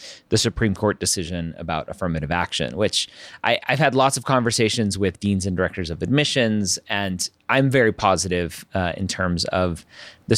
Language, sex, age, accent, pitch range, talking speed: English, male, 30-49, American, 95-125 Hz, 160 wpm